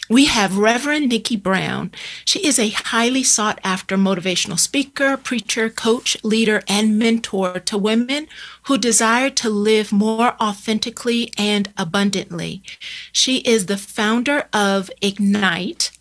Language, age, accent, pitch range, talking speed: English, 40-59, American, 200-240 Hz, 125 wpm